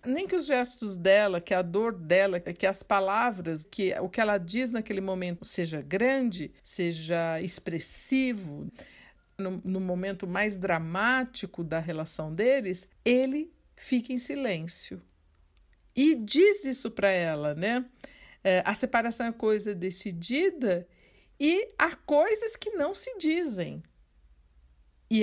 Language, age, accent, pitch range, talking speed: Portuguese, 50-69, Brazilian, 175-265 Hz, 130 wpm